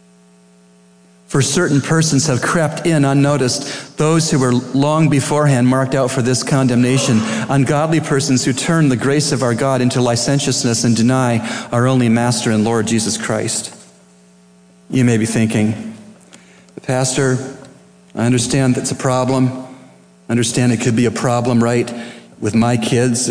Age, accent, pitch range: 40-59, American, 90-130 Hz